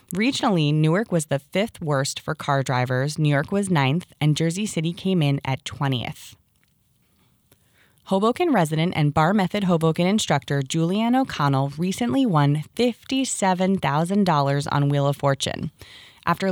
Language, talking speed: English, 135 wpm